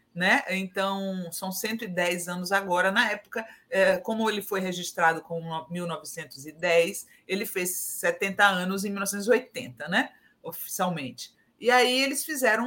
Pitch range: 190-255 Hz